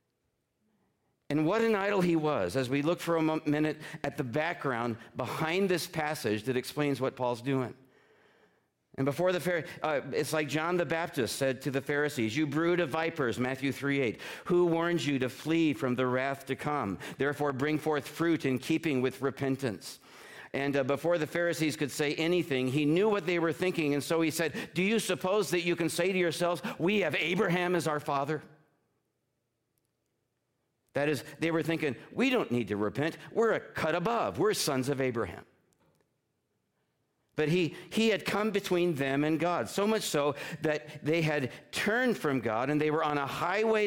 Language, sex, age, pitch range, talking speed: English, male, 50-69, 135-175 Hz, 185 wpm